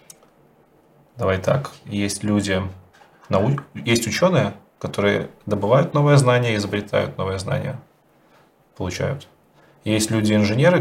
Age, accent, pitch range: 20-39, native, 100-130 Hz